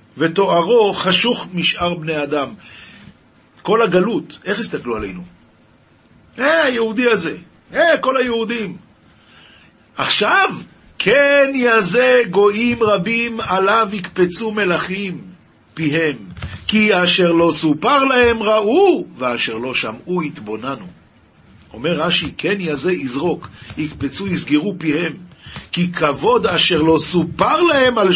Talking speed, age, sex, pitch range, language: 110 wpm, 50-69, male, 150-235 Hz, Hebrew